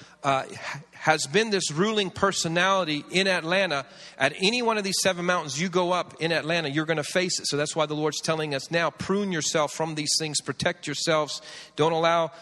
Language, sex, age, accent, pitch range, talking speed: English, male, 40-59, American, 145-165 Hz, 205 wpm